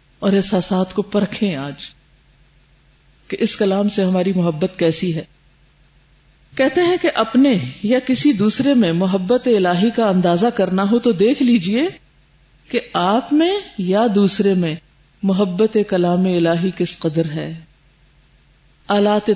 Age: 50-69